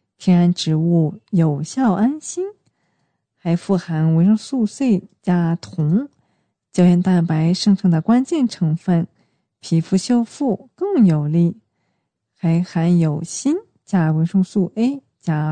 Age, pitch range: 40-59, 165-205 Hz